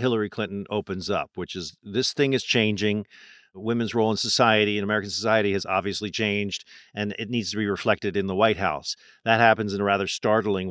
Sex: male